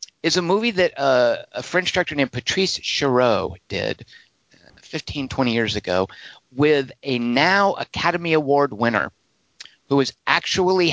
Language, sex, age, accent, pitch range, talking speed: English, male, 50-69, American, 110-150 Hz, 135 wpm